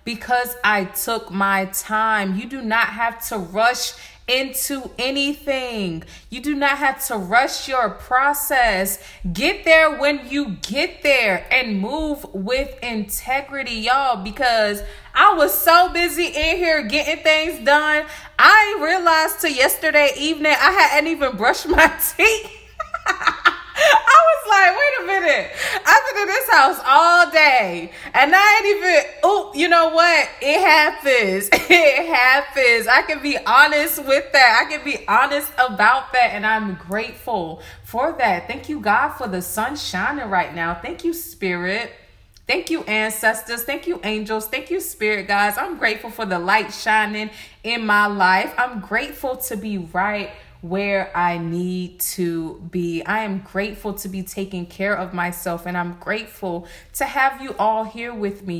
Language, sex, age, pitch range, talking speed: English, female, 20-39, 205-305 Hz, 160 wpm